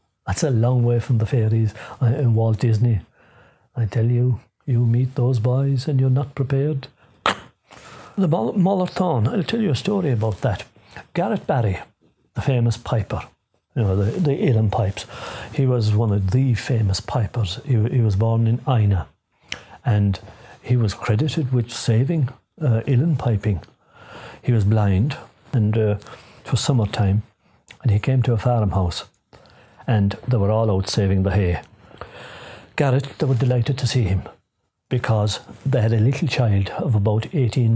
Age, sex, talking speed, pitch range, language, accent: 60-79, male, 160 wpm, 105-130 Hz, English, British